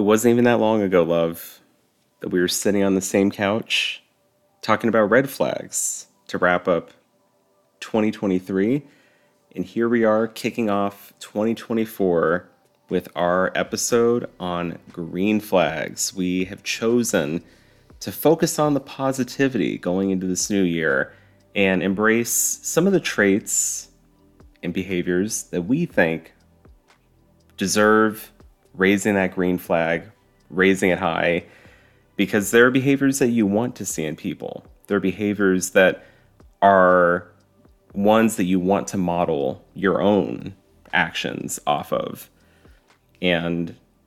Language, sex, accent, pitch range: English, male, American, 90-110 Hz